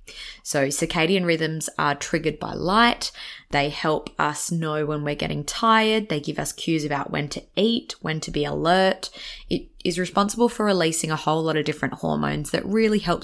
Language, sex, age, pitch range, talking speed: English, female, 20-39, 155-200 Hz, 185 wpm